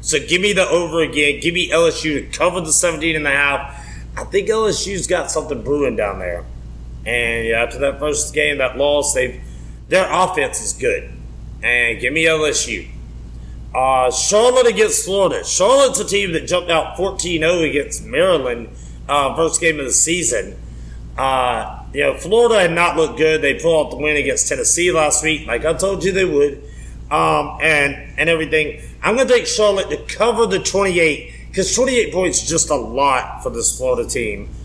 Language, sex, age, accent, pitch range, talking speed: English, male, 30-49, American, 130-175 Hz, 185 wpm